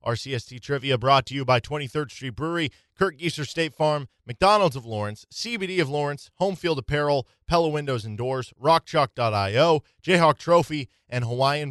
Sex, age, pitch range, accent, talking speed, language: male, 20-39, 115-145 Hz, American, 160 wpm, English